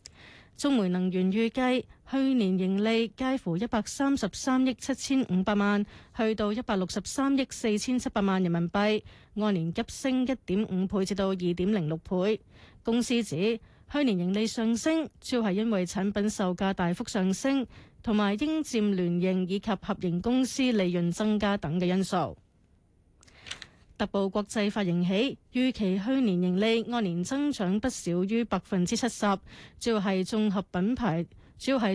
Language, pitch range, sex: Chinese, 190-240 Hz, female